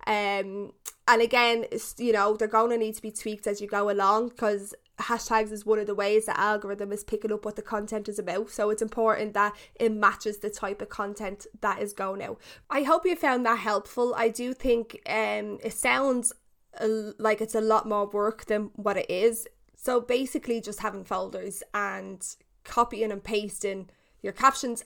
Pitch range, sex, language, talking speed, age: 200-235 Hz, female, English, 195 wpm, 10-29